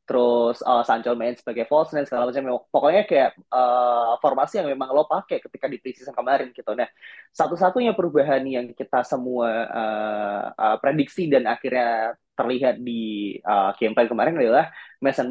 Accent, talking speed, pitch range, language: native, 160 wpm, 120-160 Hz, Indonesian